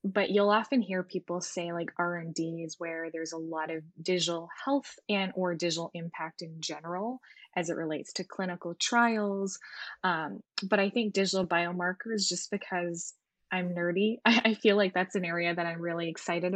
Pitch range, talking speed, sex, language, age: 175-205 Hz, 175 wpm, female, English, 10-29